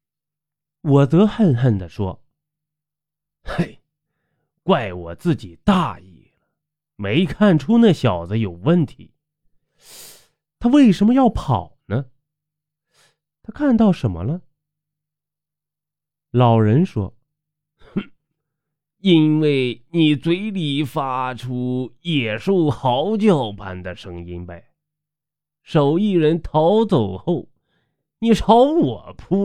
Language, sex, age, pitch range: Chinese, male, 30-49, 120-160 Hz